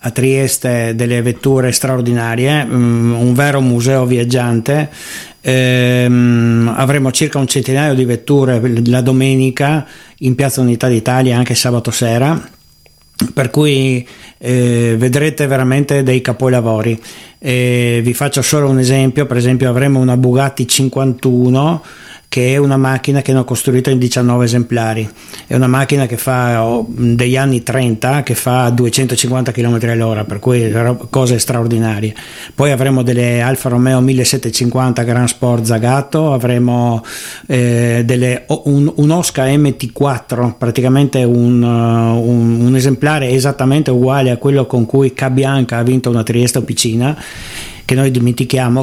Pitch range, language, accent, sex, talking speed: 120-135 Hz, Italian, native, male, 135 wpm